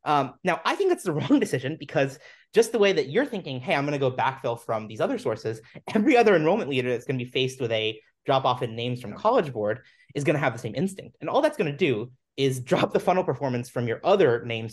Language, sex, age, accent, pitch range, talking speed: English, male, 20-39, American, 115-160 Hz, 265 wpm